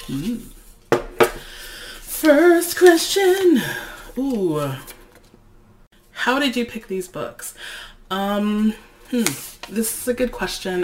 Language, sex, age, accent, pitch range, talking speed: English, female, 20-39, American, 150-200 Hz, 95 wpm